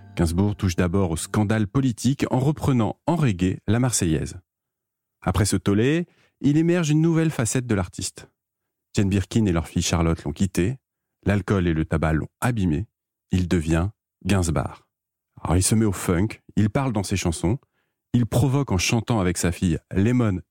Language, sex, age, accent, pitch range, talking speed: French, male, 40-59, French, 90-115 Hz, 170 wpm